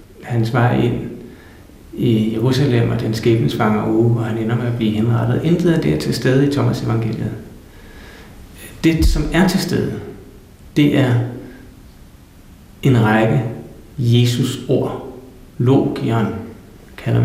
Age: 60-79